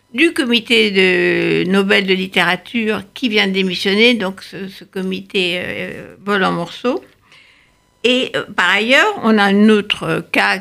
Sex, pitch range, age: female, 195-230 Hz, 60-79